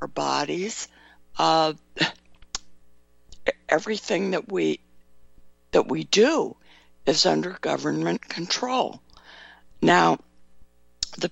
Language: English